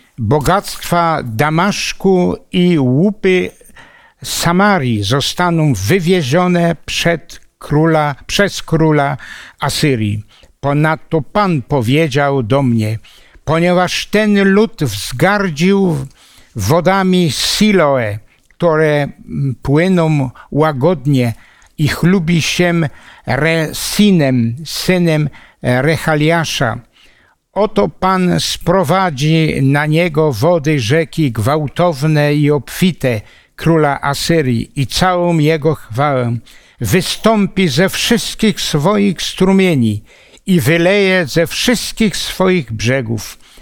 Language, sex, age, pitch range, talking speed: Polish, male, 60-79, 140-180 Hz, 80 wpm